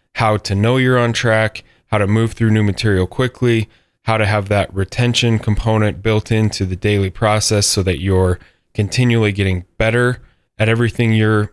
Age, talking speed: 10-29, 170 wpm